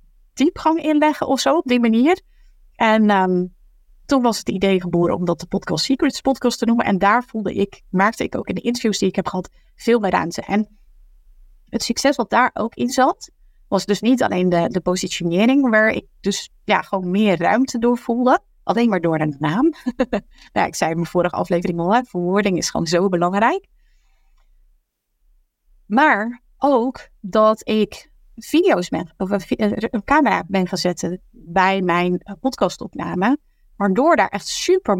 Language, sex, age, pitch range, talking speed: Dutch, female, 30-49, 185-255 Hz, 165 wpm